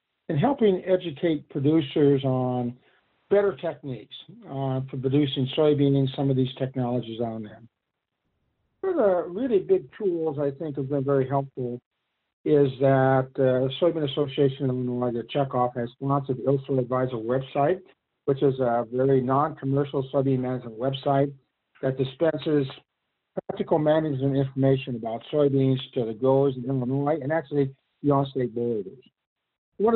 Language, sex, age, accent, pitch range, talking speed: English, male, 50-69, American, 130-160 Hz, 145 wpm